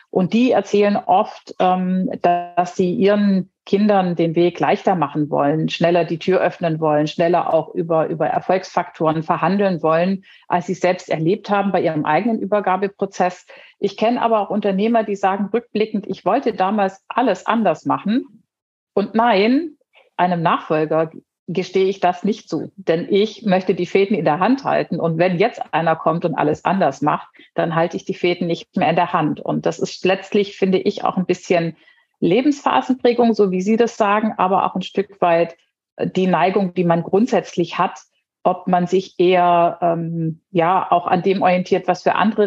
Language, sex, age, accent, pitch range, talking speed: German, female, 50-69, German, 170-200 Hz, 175 wpm